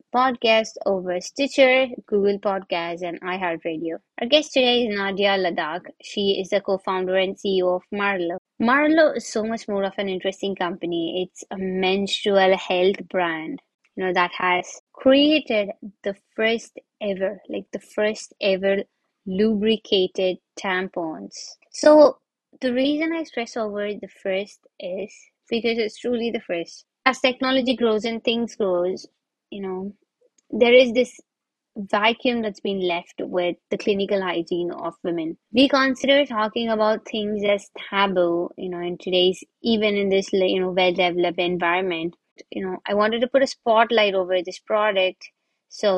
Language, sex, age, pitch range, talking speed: English, female, 20-39, 185-230 Hz, 150 wpm